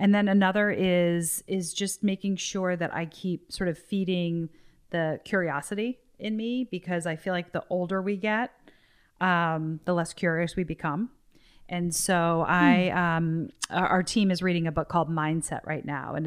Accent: American